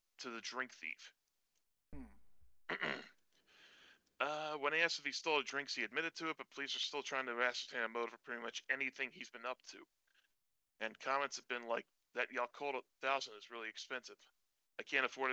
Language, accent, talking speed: English, American, 190 wpm